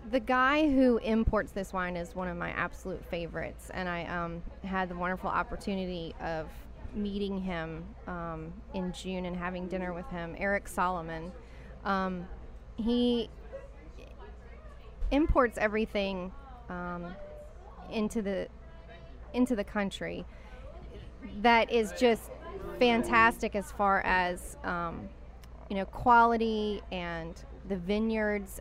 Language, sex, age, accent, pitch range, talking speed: English, female, 30-49, American, 175-205 Hz, 115 wpm